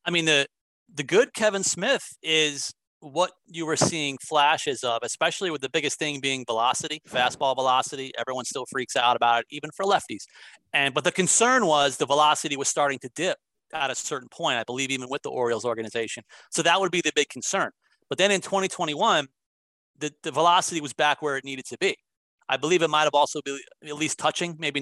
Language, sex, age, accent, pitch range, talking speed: English, male, 30-49, American, 135-175 Hz, 205 wpm